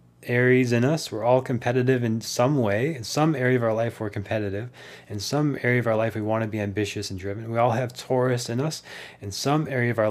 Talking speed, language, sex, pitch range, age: 245 wpm, English, male, 105-130 Hz, 20-39